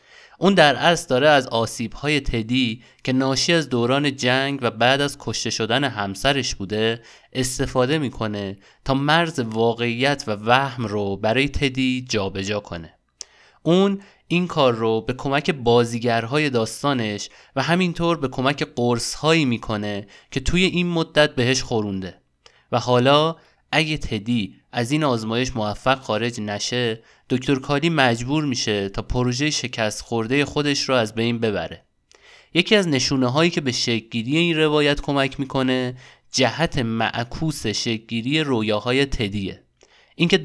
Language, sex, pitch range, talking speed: Persian, male, 115-145 Hz, 140 wpm